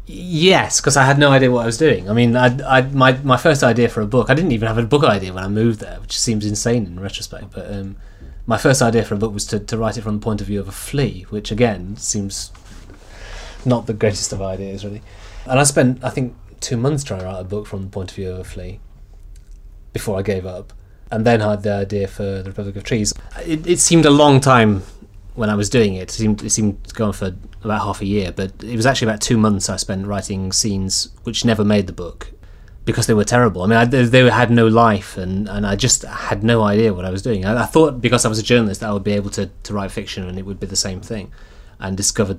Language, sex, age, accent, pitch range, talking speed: English, male, 30-49, British, 95-115 Hz, 265 wpm